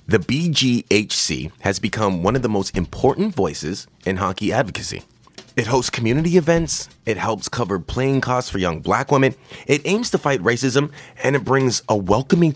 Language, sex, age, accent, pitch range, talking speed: English, male, 30-49, American, 90-130 Hz, 170 wpm